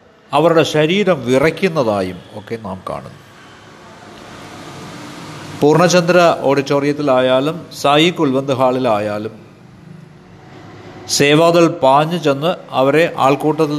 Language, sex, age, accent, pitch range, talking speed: Malayalam, male, 50-69, native, 130-175 Hz, 70 wpm